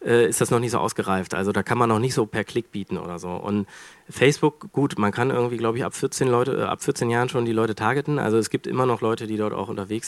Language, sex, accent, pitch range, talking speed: German, male, German, 110-140 Hz, 275 wpm